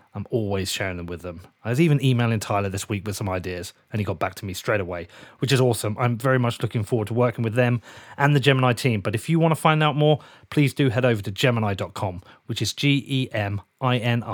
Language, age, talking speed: English, 30-49, 255 wpm